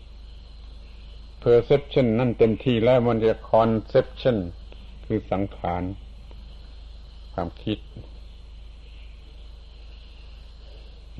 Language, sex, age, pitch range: Thai, male, 70-89, 75-110 Hz